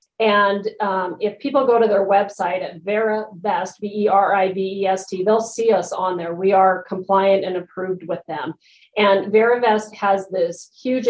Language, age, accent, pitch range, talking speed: English, 40-59, American, 180-215 Hz, 155 wpm